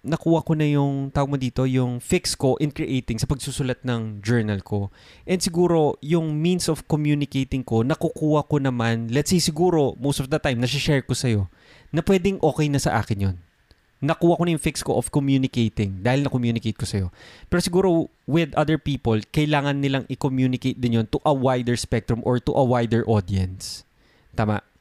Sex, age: male, 20-39